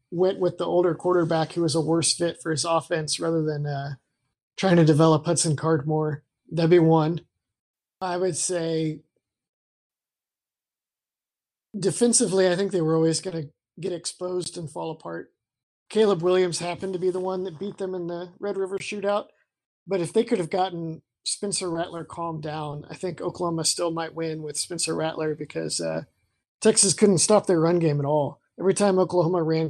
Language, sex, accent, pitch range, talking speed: English, male, American, 155-180 Hz, 180 wpm